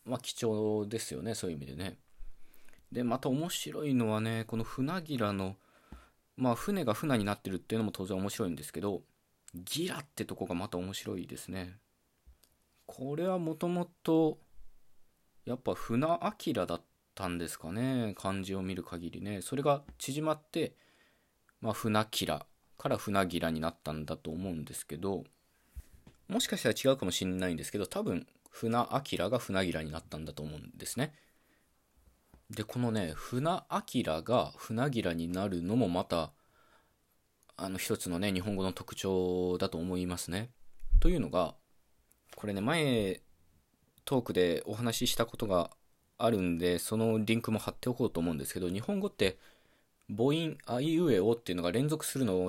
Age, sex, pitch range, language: 20-39, male, 90-125 Hz, Japanese